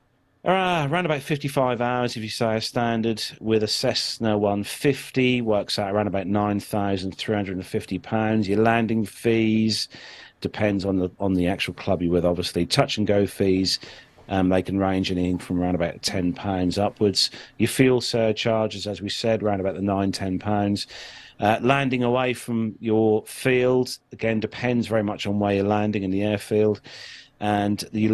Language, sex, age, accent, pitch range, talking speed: English, male, 40-59, British, 95-115 Hz, 160 wpm